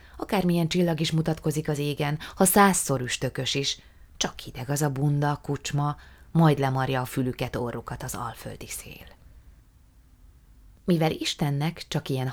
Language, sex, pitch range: Hungarian, female, 130-155 Hz